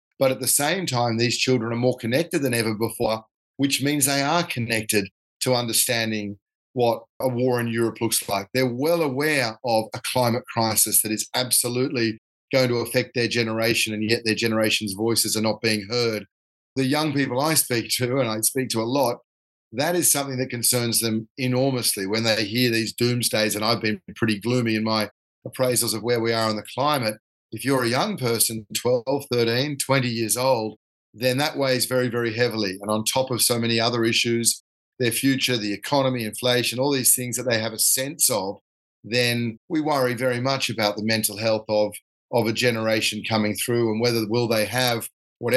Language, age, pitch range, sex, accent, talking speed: English, 40-59, 110-130 Hz, male, Australian, 195 wpm